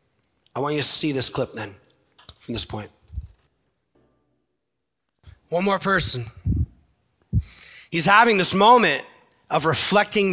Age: 30-49